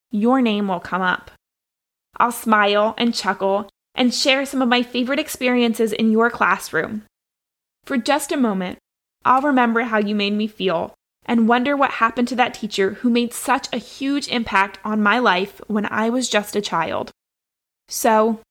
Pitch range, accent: 200-245 Hz, American